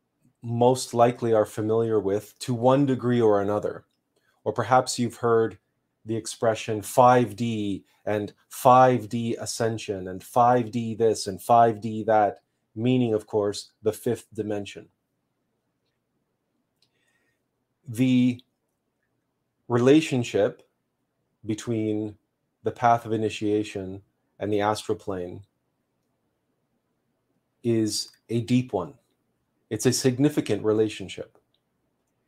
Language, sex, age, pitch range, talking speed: English, male, 30-49, 105-125 Hz, 95 wpm